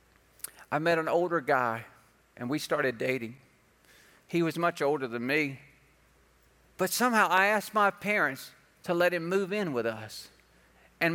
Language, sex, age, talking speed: English, male, 50-69, 155 wpm